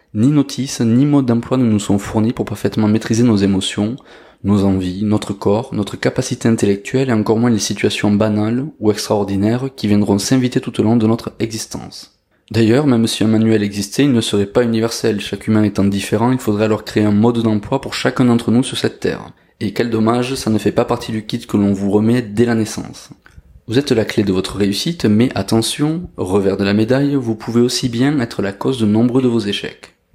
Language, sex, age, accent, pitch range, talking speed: French, male, 20-39, French, 105-125 Hz, 215 wpm